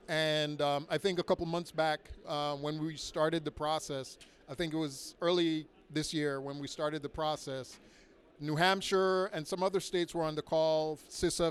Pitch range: 150-175 Hz